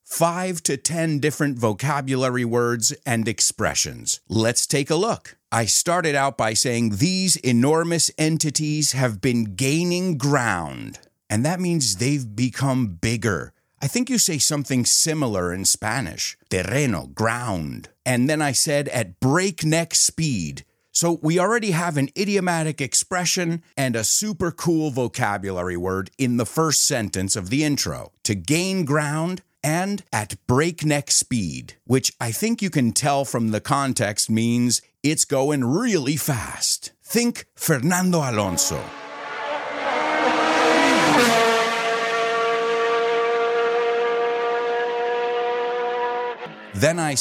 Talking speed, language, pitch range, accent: 120 wpm, English, 115-175 Hz, American